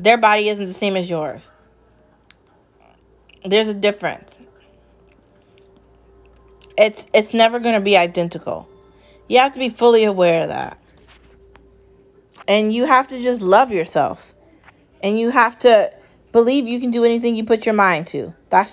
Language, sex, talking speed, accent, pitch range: English, female, 150 wpm, American, 200-245 Hz